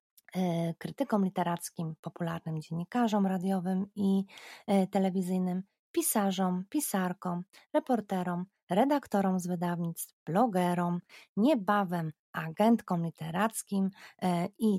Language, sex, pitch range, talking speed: Polish, female, 180-225 Hz, 75 wpm